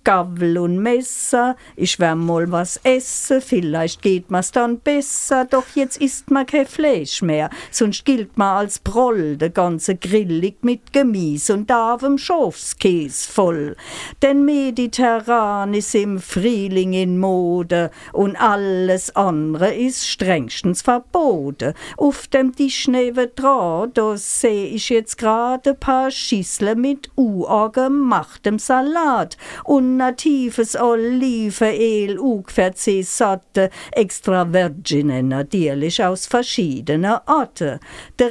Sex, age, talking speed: female, 50-69, 115 wpm